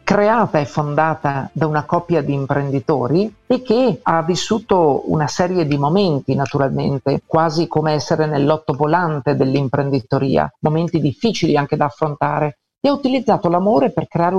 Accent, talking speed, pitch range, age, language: native, 140 wpm, 145-180 Hz, 50-69, Italian